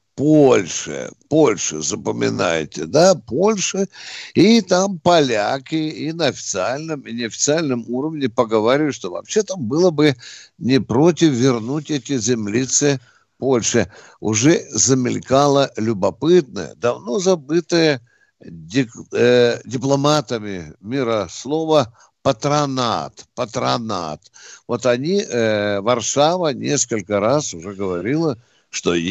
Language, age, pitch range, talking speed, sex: Russian, 60-79, 115-160 Hz, 95 wpm, male